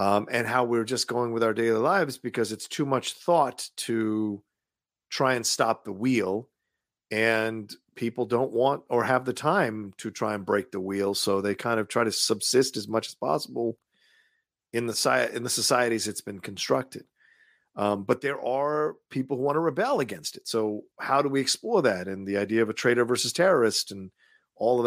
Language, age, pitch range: English, 40-59, 100-120 Hz